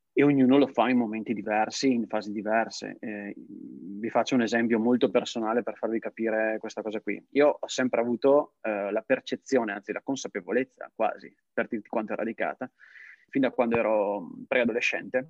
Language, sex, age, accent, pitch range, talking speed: Italian, male, 30-49, native, 115-135 Hz, 170 wpm